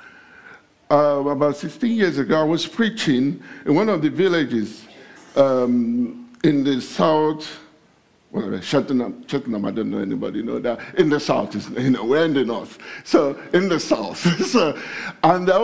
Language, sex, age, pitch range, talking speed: English, male, 50-69, 145-230 Hz, 160 wpm